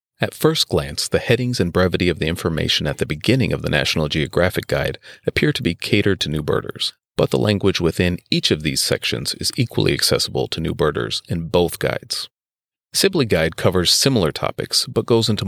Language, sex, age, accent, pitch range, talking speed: English, male, 40-59, American, 80-115 Hz, 195 wpm